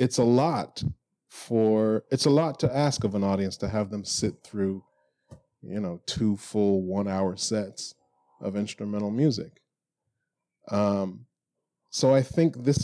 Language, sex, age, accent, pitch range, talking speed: English, male, 30-49, American, 95-120 Hz, 150 wpm